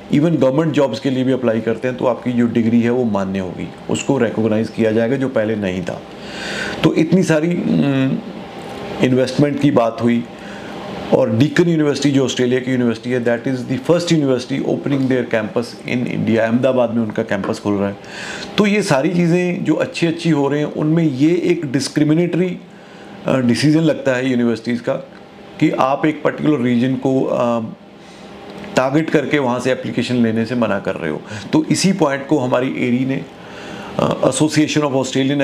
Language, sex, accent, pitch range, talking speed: Hindi, male, native, 120-150 Hz, 175 wpm